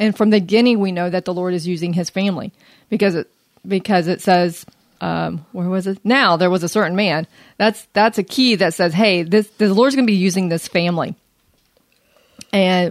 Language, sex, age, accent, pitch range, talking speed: English, female, 40-59, American, 180-215 Hz, 210 wpm